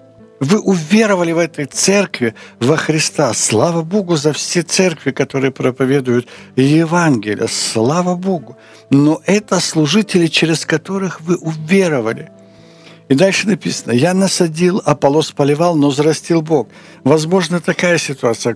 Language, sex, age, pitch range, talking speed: Ukrainian, male, 60-79, 120-170 Hz, 120 wpm